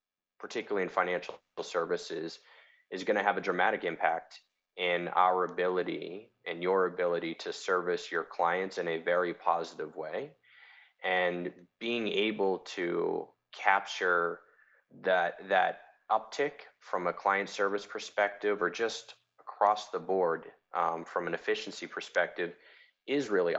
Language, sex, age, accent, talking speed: English, male, 20-39, American, 125 wpm